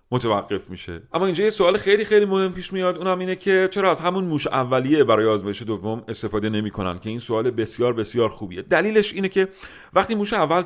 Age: 40-59